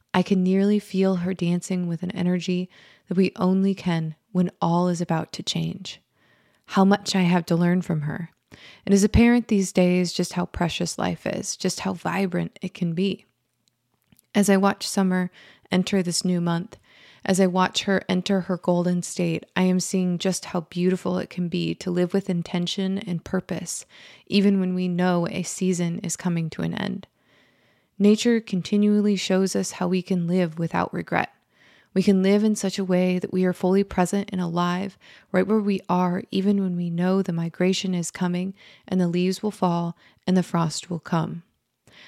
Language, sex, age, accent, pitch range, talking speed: English, female, 20-39, American, 175-195 Hz, 185 wpm